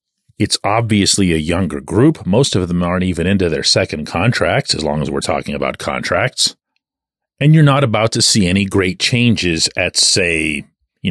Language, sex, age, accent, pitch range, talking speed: English, male, 40-59, American, 95-140 Hz, 180 wpm